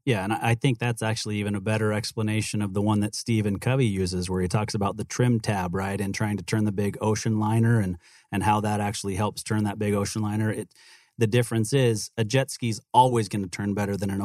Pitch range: 100-115 Hz